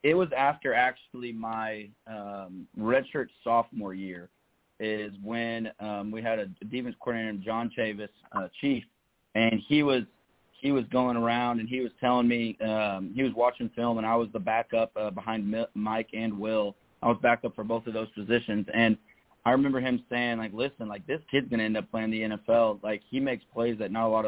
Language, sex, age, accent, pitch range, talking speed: English, male, 30-49, American, 105-120 Hz, 200 wpm